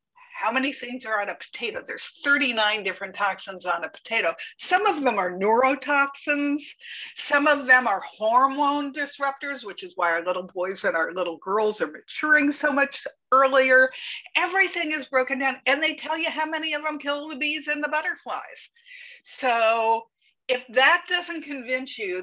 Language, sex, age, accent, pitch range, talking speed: English, female, 50-69, American, 210-295 Hz, 175 wpm